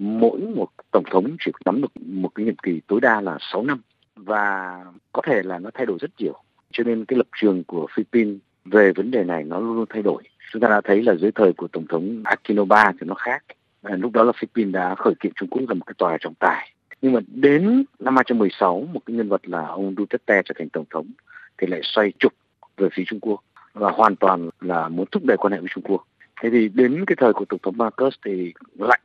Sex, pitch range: male, 100-140 Hz